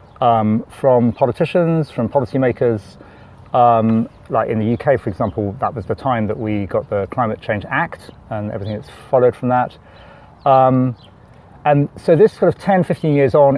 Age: 30-49